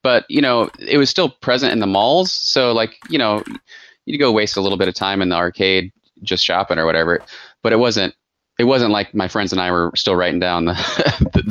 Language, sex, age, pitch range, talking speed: English, male, 20-39, 90-110 Hz, 230 wpm